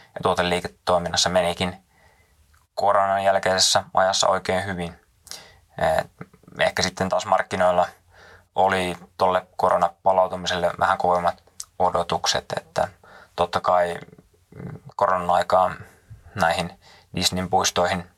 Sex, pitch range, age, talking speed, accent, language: male, 90-95 Hz, 20-39, 85 wpm, native, Finnish